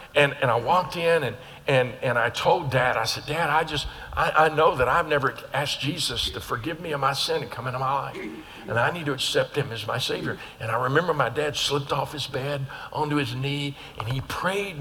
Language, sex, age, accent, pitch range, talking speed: English, male, 50-69, American, 140-230 Hz, 240 wpm